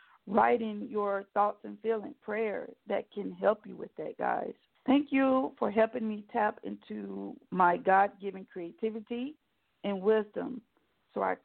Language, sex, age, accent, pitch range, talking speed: English, female, 50-69, American, 200-240 Hz, 145 wpm